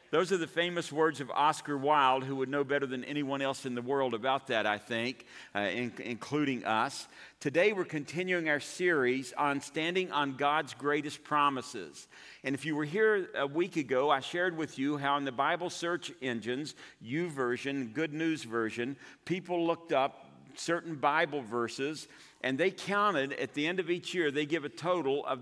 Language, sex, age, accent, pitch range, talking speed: English, male, 50-69, American, 135-170 Hz, 190 wpm